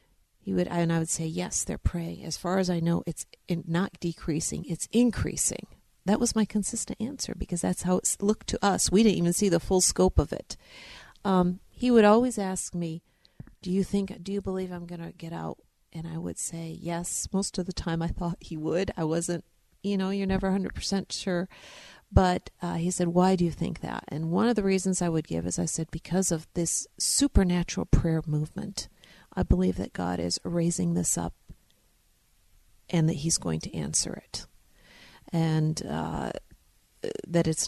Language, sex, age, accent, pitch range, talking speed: English, female, 50-69, American, 160-190 Hz, 195 wpm